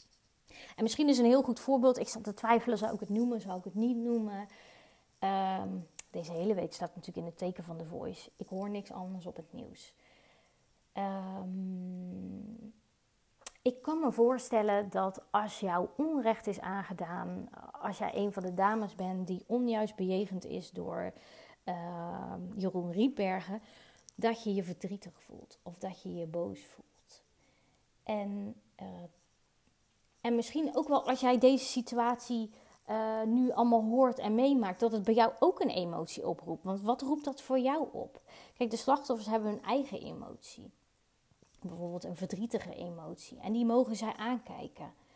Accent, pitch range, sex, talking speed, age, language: Dutch, 190-235 Hz, female, 165 wpm, 30-49, Dutch